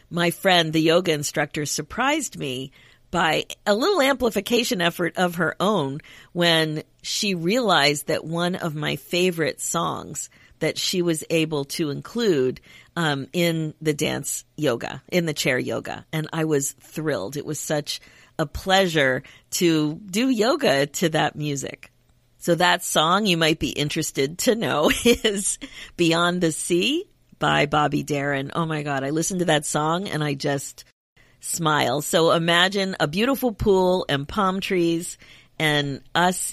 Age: 50-69